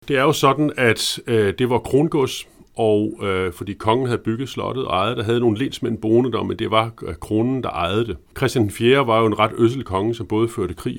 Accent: native